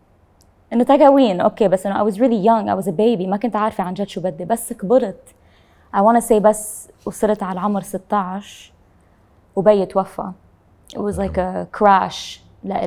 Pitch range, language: 190-220 Hz, English